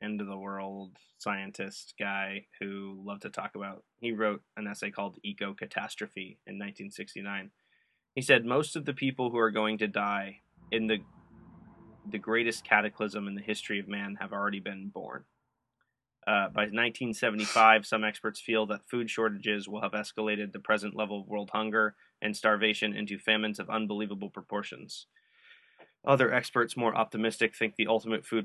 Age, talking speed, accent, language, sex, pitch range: 20-39, 165 wpm, American, English, male, 105-110 Hz